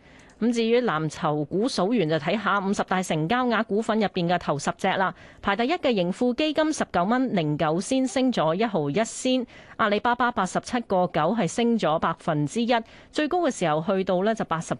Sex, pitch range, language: female, 170-240 Hz, Chinese